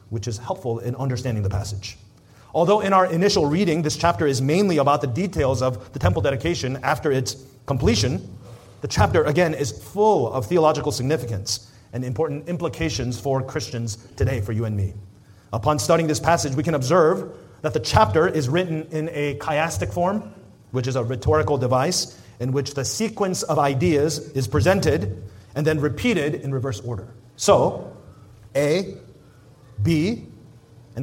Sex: male